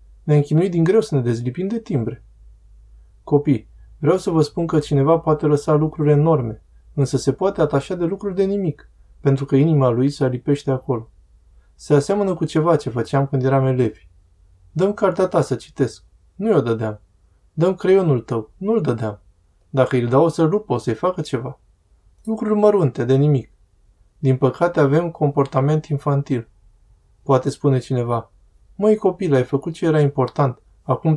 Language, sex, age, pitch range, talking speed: Romanian, male, 20-39, 115-160 Hz, 165 wpm